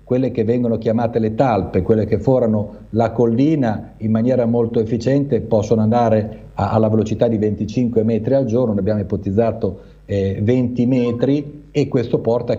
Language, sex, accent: Italian, male, native